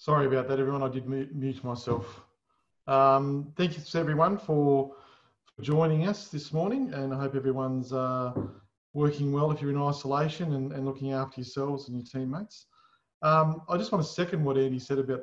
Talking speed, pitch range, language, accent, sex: 185 wpm, 125-150 Hz, English, Australian, male